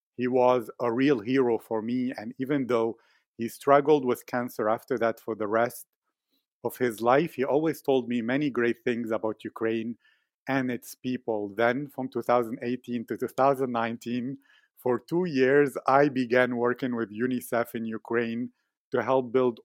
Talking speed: 160 wpm